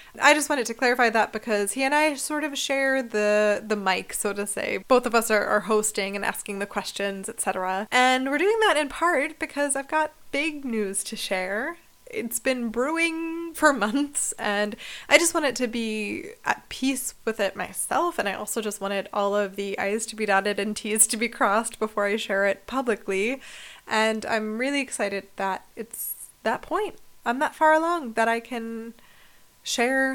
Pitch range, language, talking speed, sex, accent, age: 210-280 Hz, English, 195 wpm, female, American, 20-39